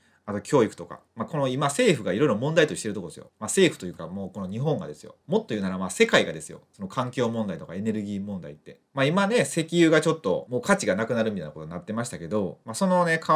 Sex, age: male, 30-49